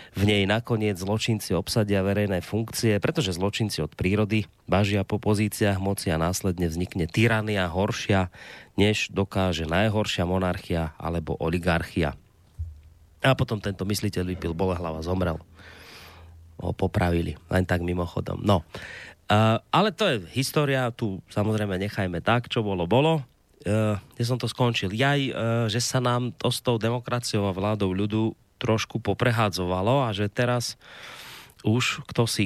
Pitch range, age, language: 95-120 Hz, 30-49, Slovak